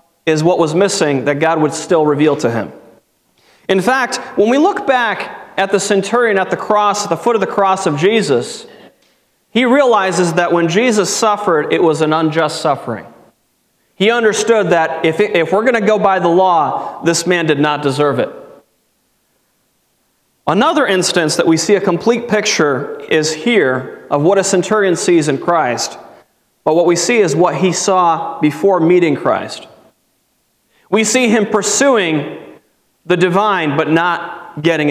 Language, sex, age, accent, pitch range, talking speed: English, male, 30-49, American, 165-215 Hz, 170 wpm